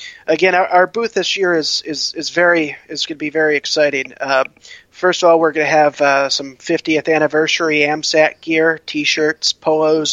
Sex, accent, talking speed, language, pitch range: male, American, 185 wpm, English, 140-160 Hz